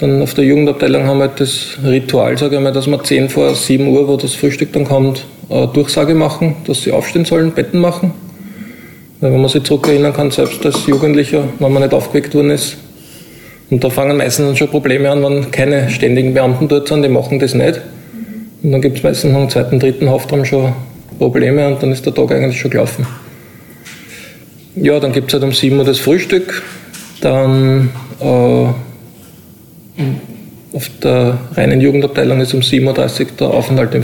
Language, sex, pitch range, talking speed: German, male, 135-150 Hz, 180 wpm